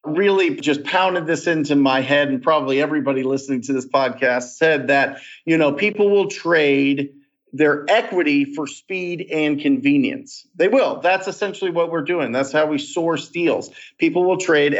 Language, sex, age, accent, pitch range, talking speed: English, male, 40-59, American, 140-190 Hz, 170 wpm